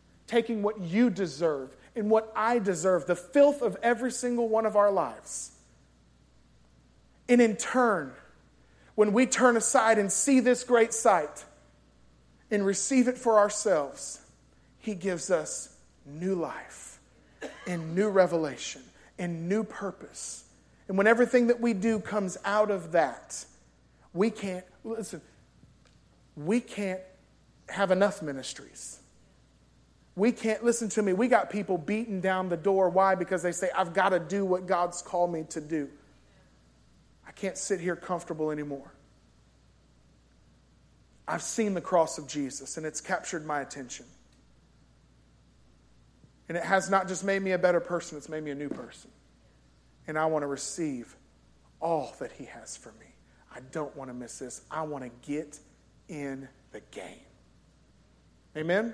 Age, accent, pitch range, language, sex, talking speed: 40-59, American, 135-210 Hz, English, male, 150 wpm